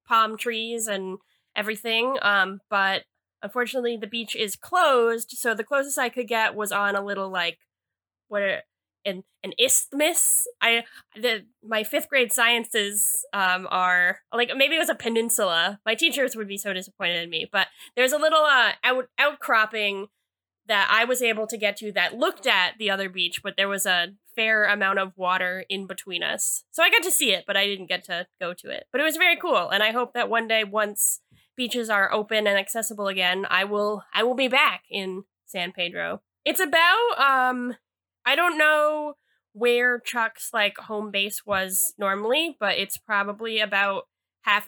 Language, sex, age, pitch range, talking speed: English, female, 10-29, 195-250 Hz, 185 wpm